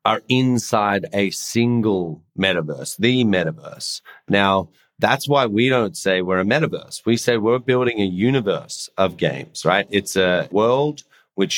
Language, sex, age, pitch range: English, male, 30-49, 95-120 Hz